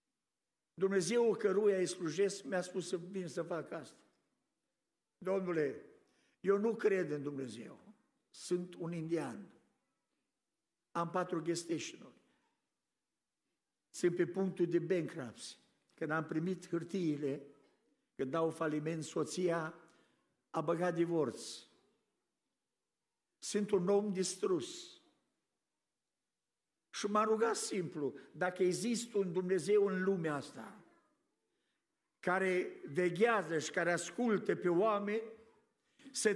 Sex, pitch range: male, 170-215 Hz